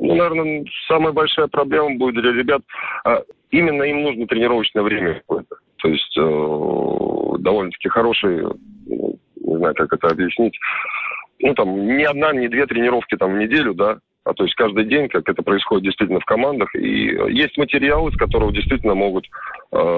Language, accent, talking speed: Russian, native, 160 wpm